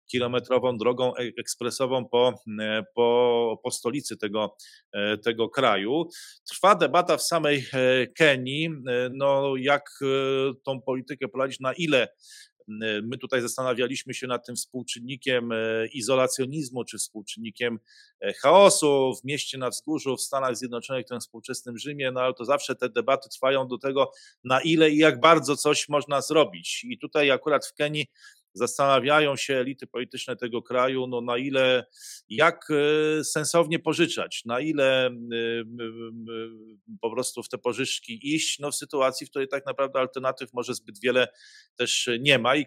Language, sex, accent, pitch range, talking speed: Polish, male, native, 120-145 Hz, 140 wpm